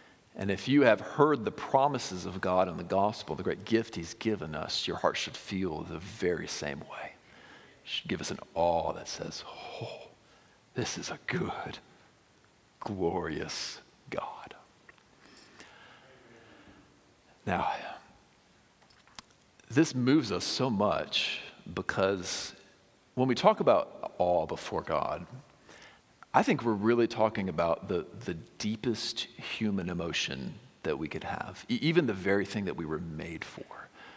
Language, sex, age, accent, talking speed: English, male, 50-69, American, 140 wpm